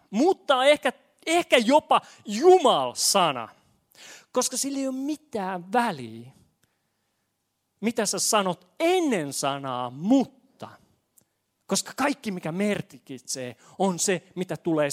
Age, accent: 30-49, native